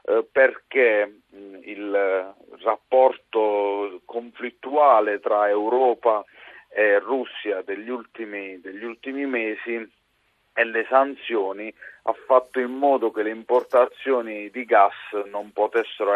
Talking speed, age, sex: 95 wpm, 40-59, male